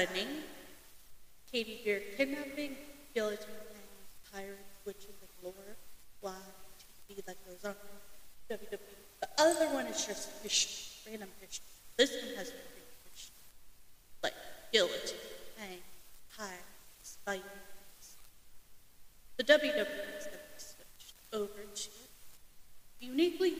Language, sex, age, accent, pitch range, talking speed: English, female, 30-49, American, 200-285 Hz, 75 wpm